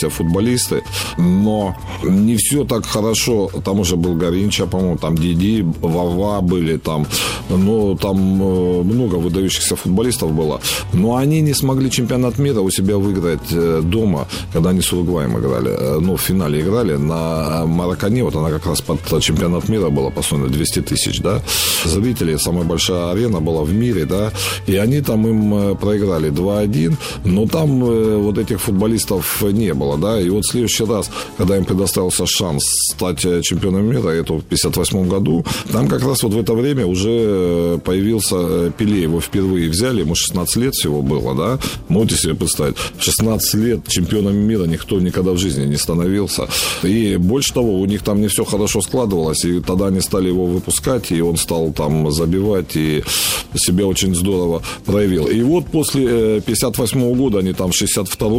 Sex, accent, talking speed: male, native, 160 wpm